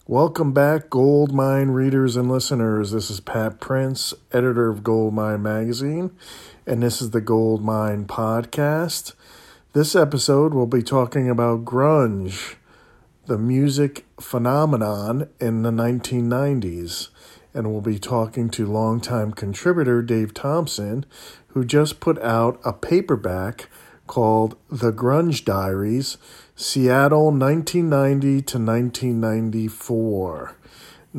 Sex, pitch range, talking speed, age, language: male, 110-135 Hz, 115 wpm, 40-59, English